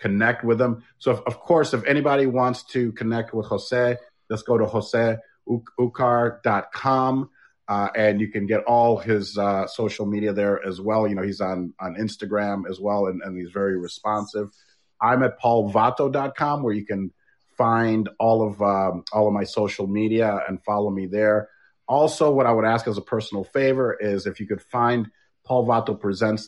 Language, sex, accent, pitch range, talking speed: English, male, American, 105-125 Hz, 180 wpm